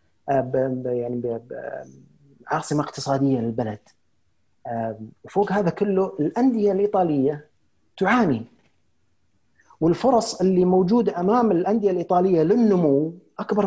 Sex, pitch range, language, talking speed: male, 145-215 Hz, Arabic, 85 wpm